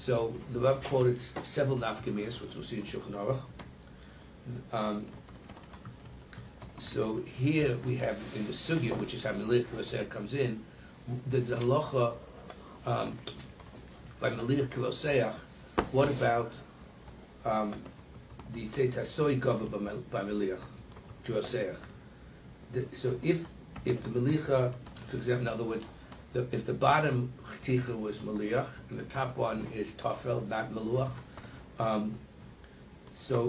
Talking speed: 115 wpm